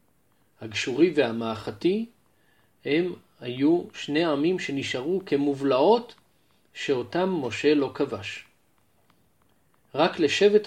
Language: Hebrew